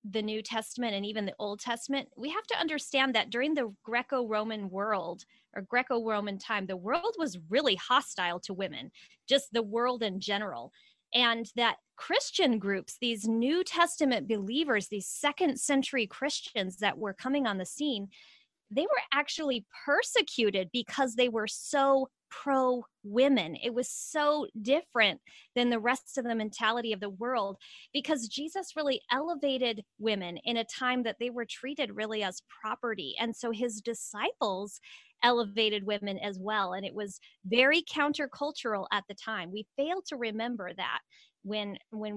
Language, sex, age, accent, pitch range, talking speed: English, female, 20-39, American, 210-270 Hz, 155 wpm